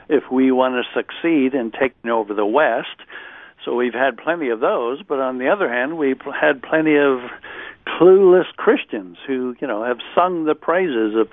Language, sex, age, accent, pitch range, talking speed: English, male, 60-79, American, 125-150 Hz, 185 wpm